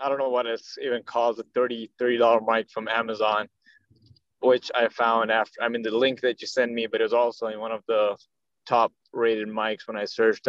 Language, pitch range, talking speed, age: English, 110-130 Hz, 230 wpm, 20-39